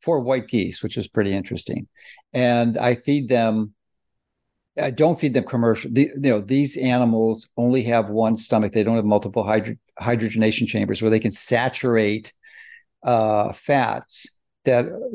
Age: 60-79